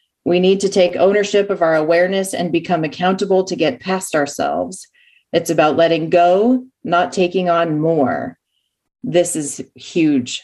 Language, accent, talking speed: English, American, 150 wpm